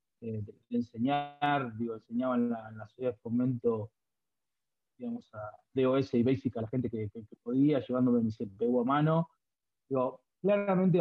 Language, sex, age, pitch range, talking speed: Spanish, male, 30-49, 125-165 Hz, 160 wpm